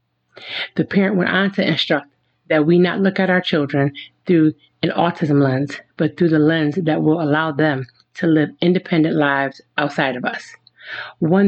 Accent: American